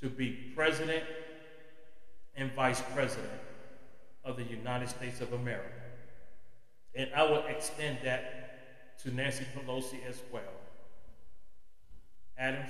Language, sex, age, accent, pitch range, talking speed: English, male, 30-49, American, 130-160 Hz, 110 wpm